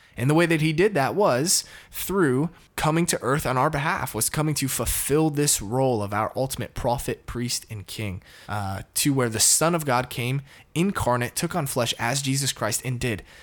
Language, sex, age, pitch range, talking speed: English, male, 20-39, 100-140 Hz, 200 wpm